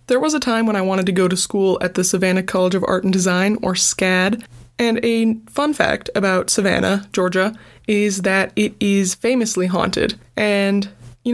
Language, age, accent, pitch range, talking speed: English, 20-39, American, 185-215 Hz, 190 wpm